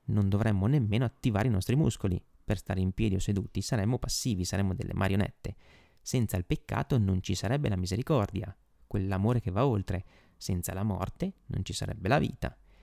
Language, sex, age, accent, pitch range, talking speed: Italian, male, 30-49, native, 95-125 Hz, 180 wpm